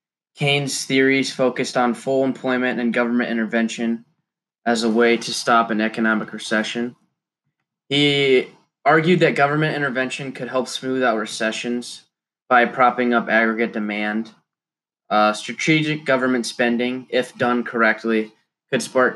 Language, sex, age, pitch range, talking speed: English, male, 20-39, 115-130 Hz, 130 wpm